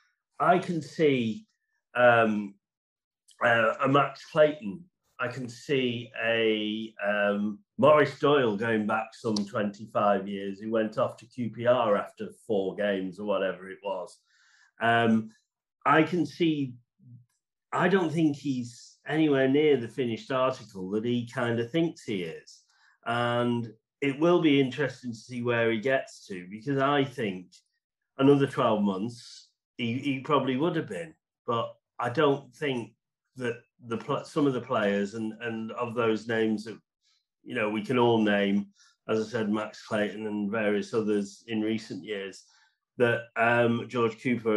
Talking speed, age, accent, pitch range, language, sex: 150 wpm, 40-59, British, 110-140 Hz, English, male